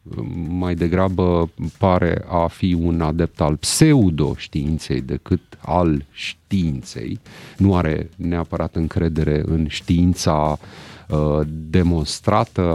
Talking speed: 90 wpm